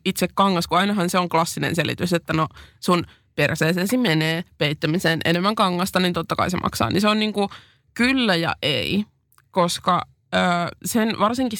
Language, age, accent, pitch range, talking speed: Finnish, 20-39, native, 165-200 Hz, 165 wpm